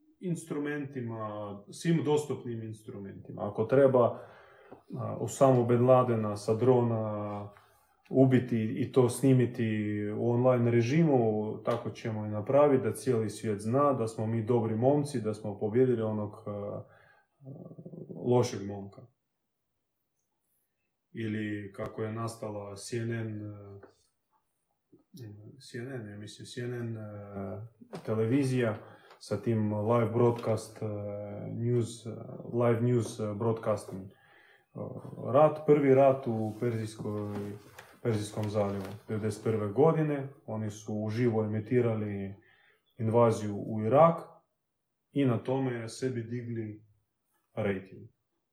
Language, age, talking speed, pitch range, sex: Croatian, 30-49, 95 wpm, 105-130 Hz, male